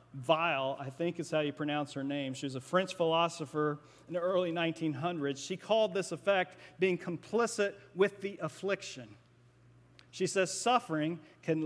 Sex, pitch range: male, 150-195 Hz